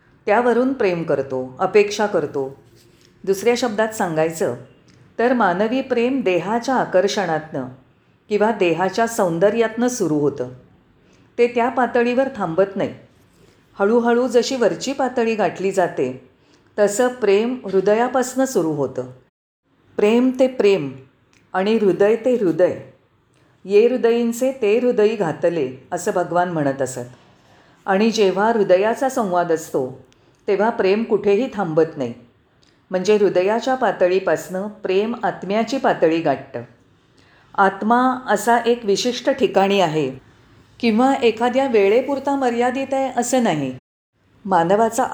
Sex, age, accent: female, 40-59, native